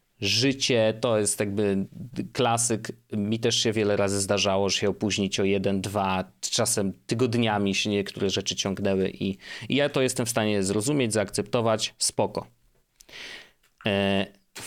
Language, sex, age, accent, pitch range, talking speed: Polish, male, 30-49, native, 105-150 Hz, 140 wpm